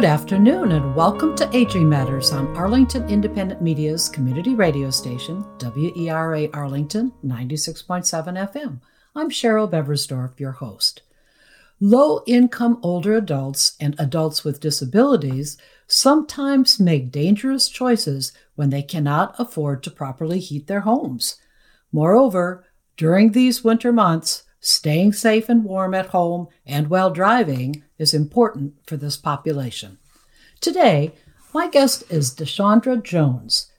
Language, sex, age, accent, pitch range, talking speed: English, female, 60-79, American, 145-225 Hz, 120 wpm